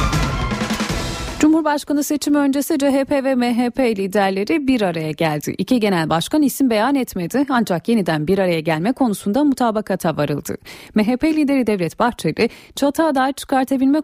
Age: 30-49